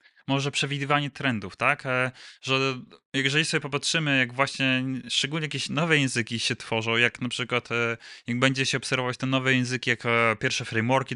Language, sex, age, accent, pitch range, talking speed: Polish, male, 20-39, native, 125-140 Hz, 155 wpm